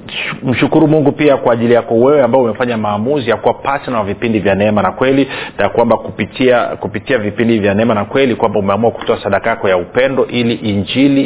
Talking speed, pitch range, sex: 195 wpm, 105-130 Hz, male